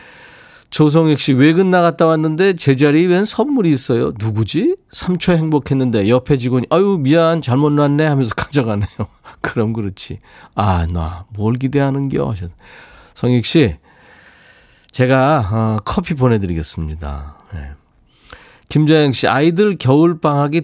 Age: 40-59